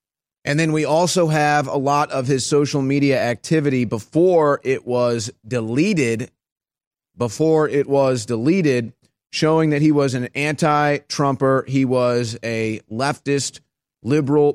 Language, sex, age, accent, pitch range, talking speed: English, male, 30-49, American, 115-140 Hz, 130 wpm